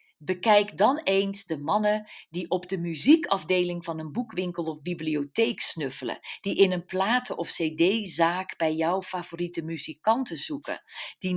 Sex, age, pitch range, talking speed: female, 50-69, 175-280 Hz, 145 wpm